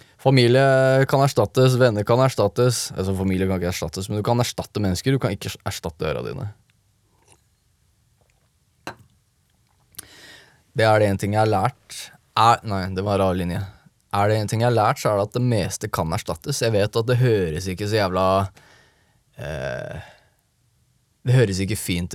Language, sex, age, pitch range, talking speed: English, male, 20-39, 95-125 Hz, 170 wpm